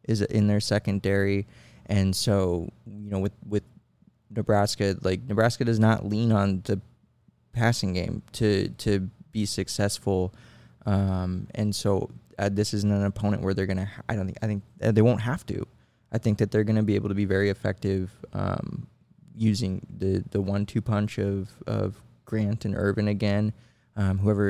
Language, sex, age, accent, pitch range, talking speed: English, male, 20-39, American, 100-110 Hz, 175 wpm